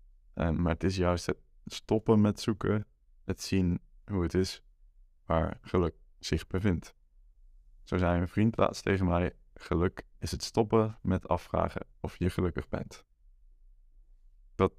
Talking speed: 140 wpm